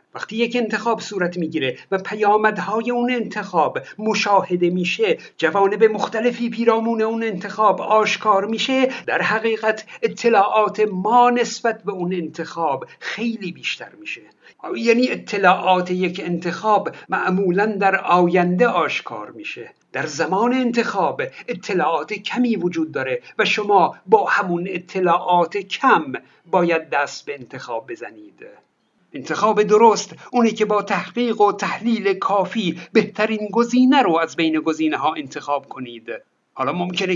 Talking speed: 125 wpm